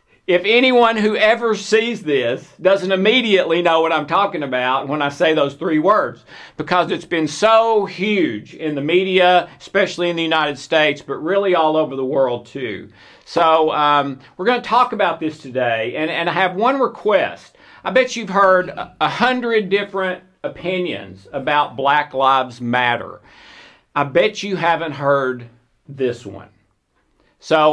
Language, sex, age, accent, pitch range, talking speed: English, male, 50-69, American, 140-195 Hz, 160 wpm